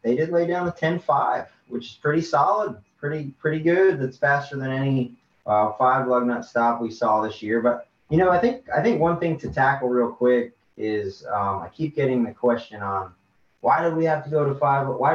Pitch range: 105-125 Hz